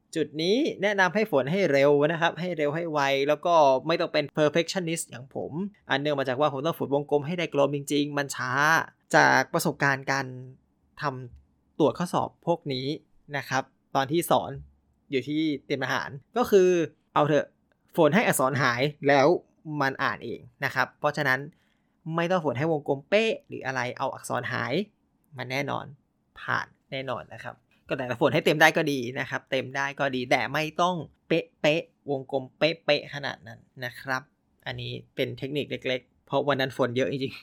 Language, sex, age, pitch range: Thai, male, 20-39, 135-165 Hz